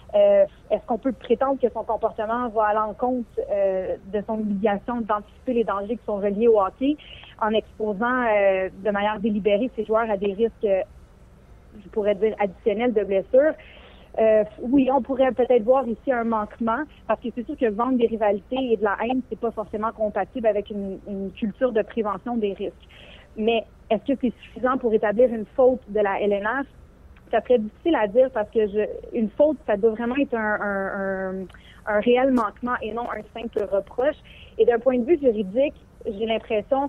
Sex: female